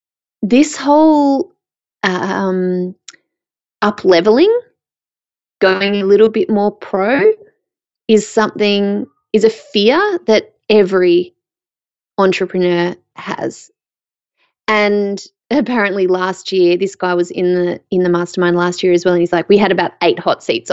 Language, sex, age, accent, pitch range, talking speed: English, female, 20-39, Australian, 180-245 Hz, 125 wpm